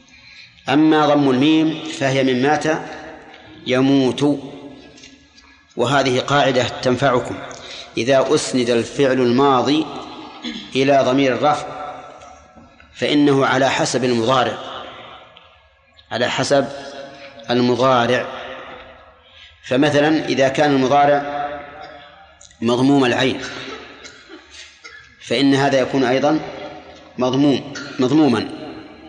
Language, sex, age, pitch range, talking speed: Arabic, male, 30-49, 130-155 Hz, 75 wpm